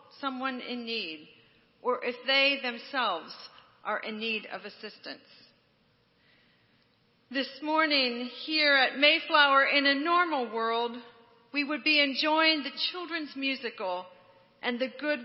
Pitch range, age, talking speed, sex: 230-280 Hz, 40-59, 120 wpm, female